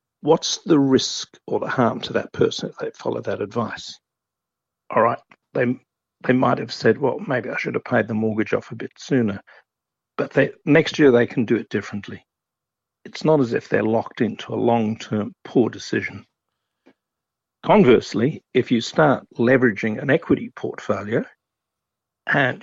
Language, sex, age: English, male, 50-69